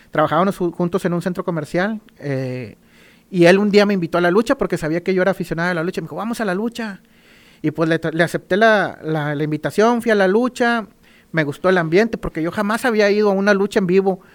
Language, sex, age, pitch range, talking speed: Spanish, male, 40-59, 160-215 Hz, 240 wpm